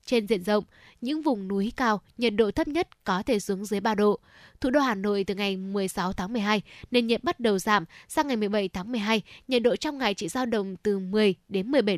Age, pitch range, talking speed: 10-29, 205-245 Hz, 235 wpm